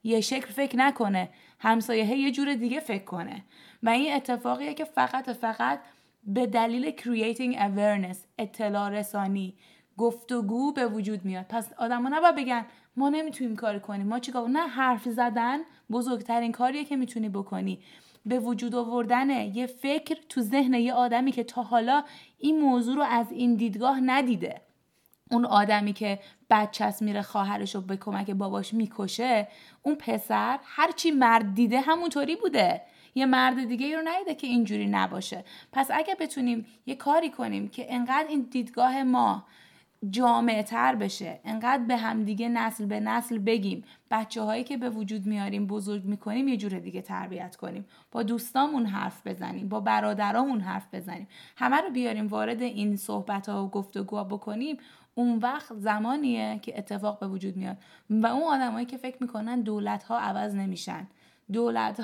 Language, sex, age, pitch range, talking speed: Persian, female, 20-39, 210-255 Hz, 155 wpm